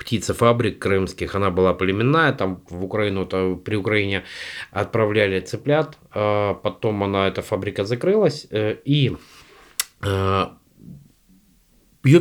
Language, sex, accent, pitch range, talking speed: Russian, male, native, 95-120 Hz, 100 wpm